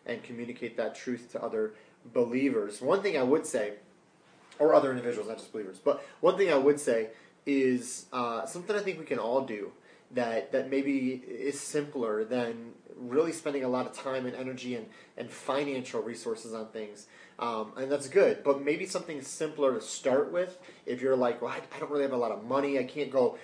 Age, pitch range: 30-49, 120-140 Hz